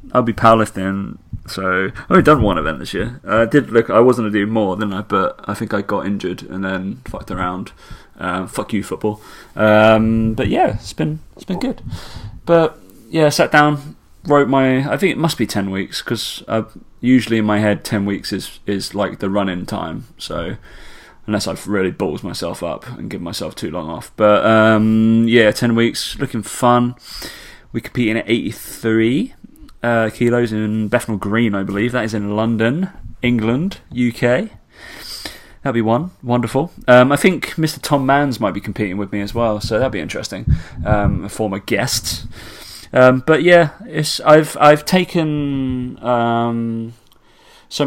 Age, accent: 20-39, British